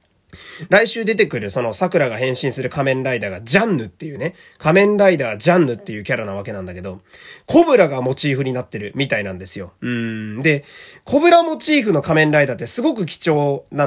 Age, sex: 30-49, male